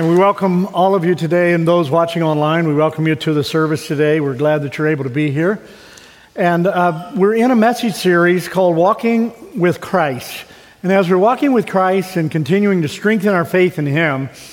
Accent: American